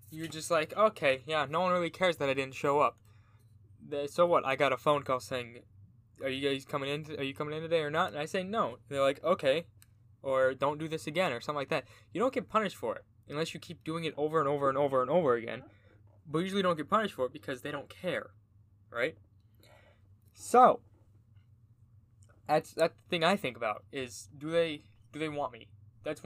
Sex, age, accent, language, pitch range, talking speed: male, 10-29, American, English, 110-155 Hz, 225 wpm